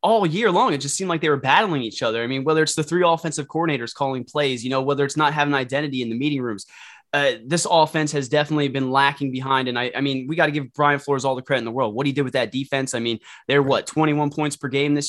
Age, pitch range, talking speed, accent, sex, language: 20-39, 130-150 Hz, 280 wpm, American, male, English